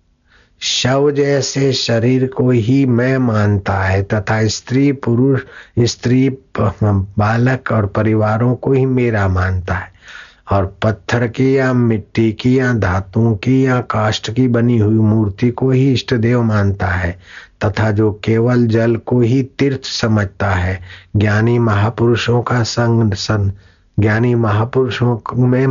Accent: native